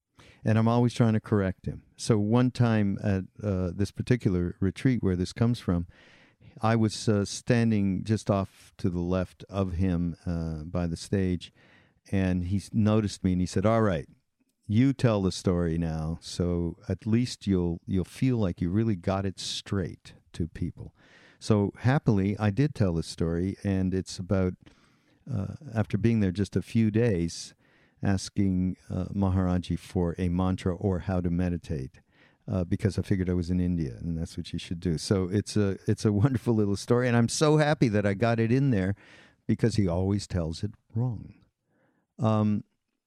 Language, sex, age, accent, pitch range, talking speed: English, male, 50-69, American, 90-115 Hz, 180 wpm